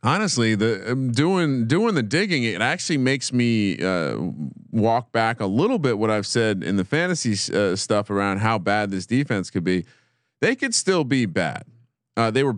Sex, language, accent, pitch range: male, English, American, 105-130 Hz